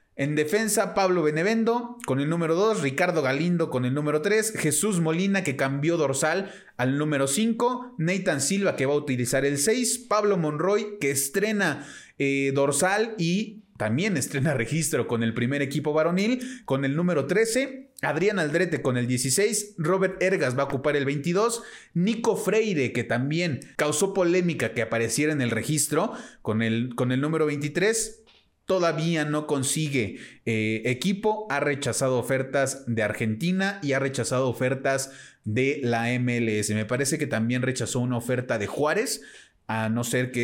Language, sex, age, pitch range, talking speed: Spanish, male, 30-49, 125-180 Hz, 160 wpm